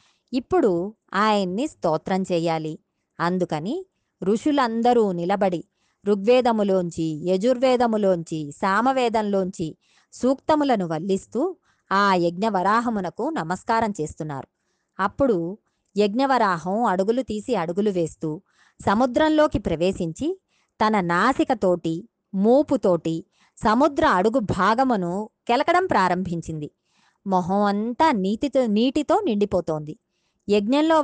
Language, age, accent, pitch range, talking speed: Telugu, 20-39, native, 180-250 Hz, 70 wpm